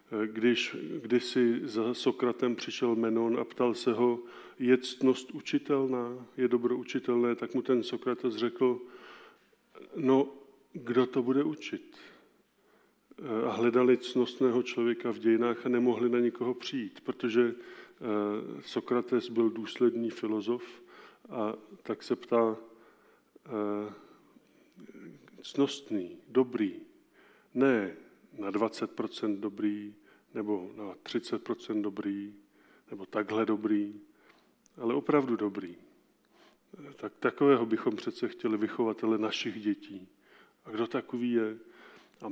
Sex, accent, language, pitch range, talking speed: male, native, Czech, 115-130 Hz, 105 wpm